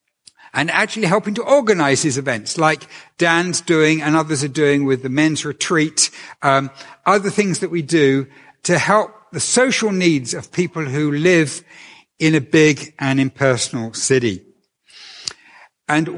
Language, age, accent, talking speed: English, 60-79, British, 150 wpm